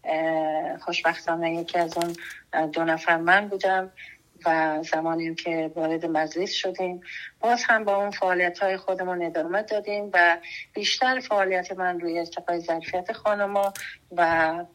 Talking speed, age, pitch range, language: 125 wpm, 30-49, 165-190 Hz, Persian